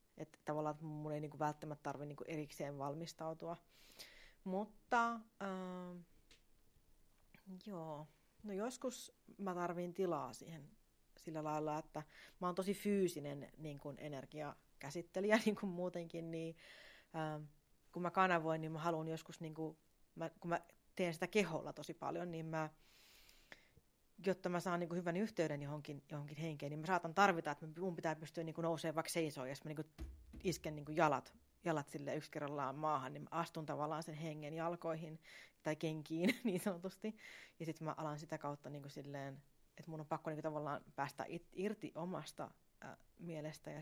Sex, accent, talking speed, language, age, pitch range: female, native, 155 wpm, Finnish, 30-49, 150-175 Hz